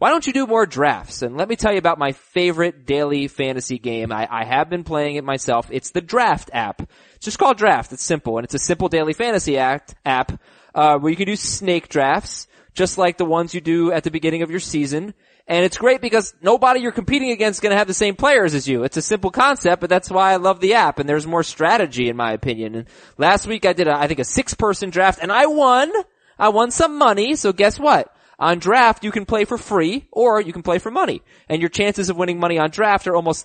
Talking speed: 250 wpm